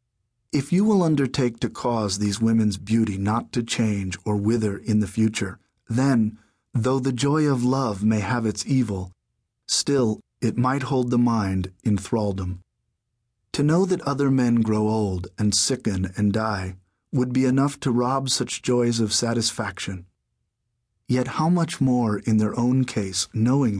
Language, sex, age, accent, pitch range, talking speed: English, male, 40-59, American, 105-130 Hz, 160 wpm